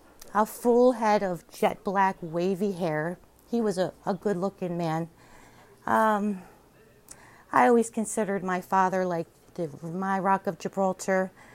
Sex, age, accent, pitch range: female, 40-59, American, 175-220 Hz